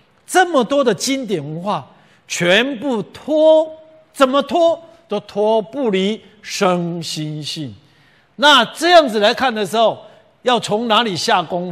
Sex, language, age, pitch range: male, Chinese, 50-69, 155-235 Hz